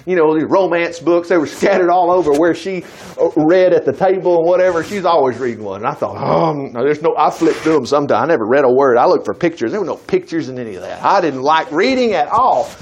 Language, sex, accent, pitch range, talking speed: English, male, American, 195-285 Hz, 265 wpm